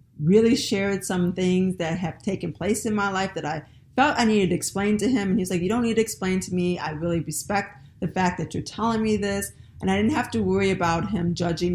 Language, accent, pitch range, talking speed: English, American, 160-210 Hz, 250 wpm